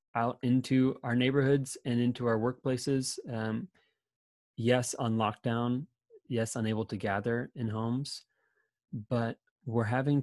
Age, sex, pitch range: 20-39, male, 105-125 Hz